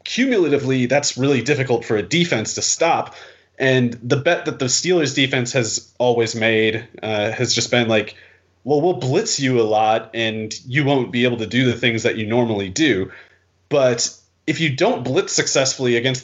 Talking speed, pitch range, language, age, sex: 185 wpm, 115-140 Hz, English, 30-49, male